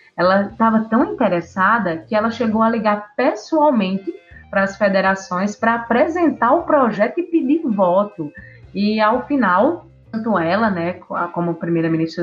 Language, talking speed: Portuguese, 135 wpm